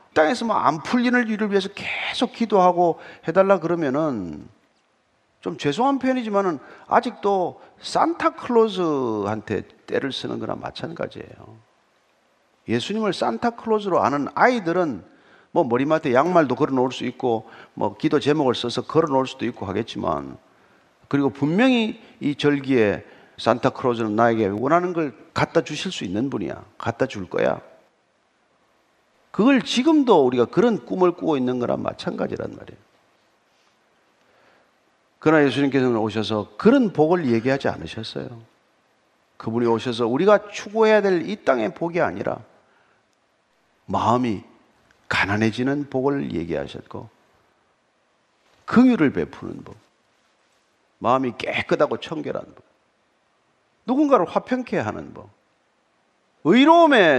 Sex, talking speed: male, 100 wpm